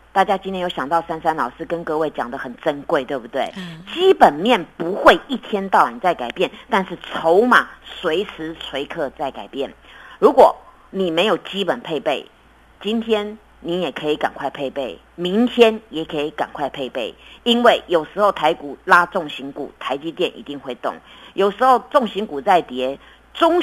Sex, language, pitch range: female, Chinese, 165-235 Hz